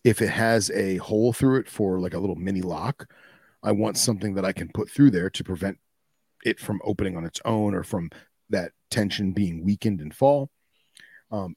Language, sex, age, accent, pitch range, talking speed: English, male, 30-49, American, 95-120 Hz, 200 wpm